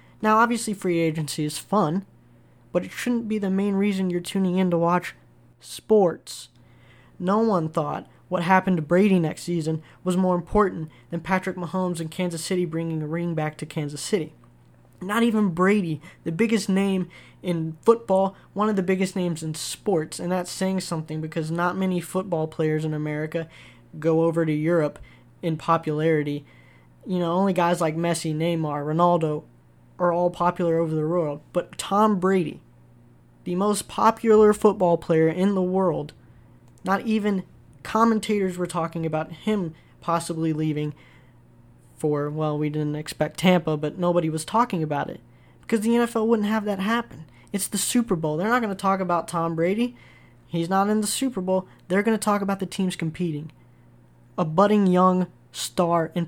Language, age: English, 10-29